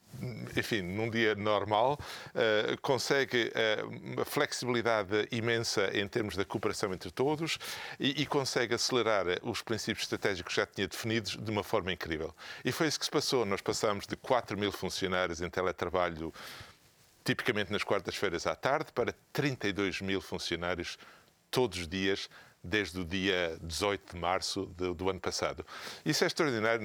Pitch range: 95-125 Hz